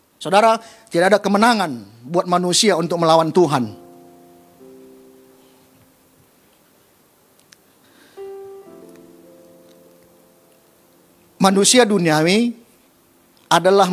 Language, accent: Indonesian, native